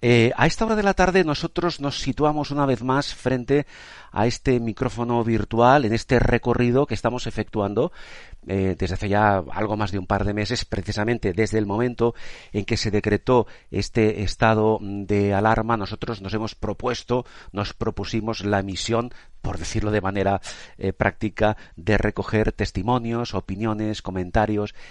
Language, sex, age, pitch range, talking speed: Spanish, male, 40-59, 100-120 Hz, 160 wpm